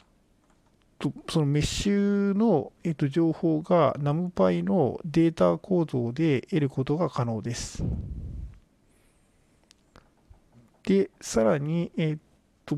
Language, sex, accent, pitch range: Japanese, male, native, 120-170 Hz